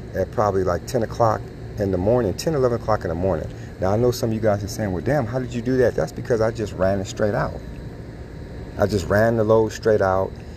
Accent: American